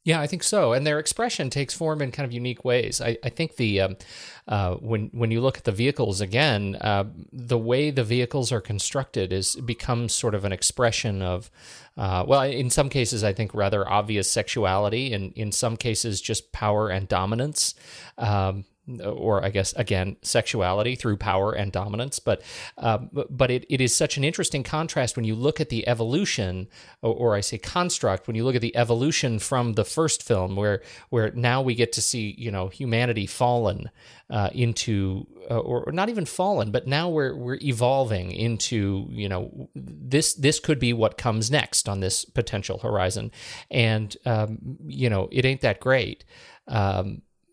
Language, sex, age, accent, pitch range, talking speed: English, male, 40-59, American, 105-130 Hz, 185 wpm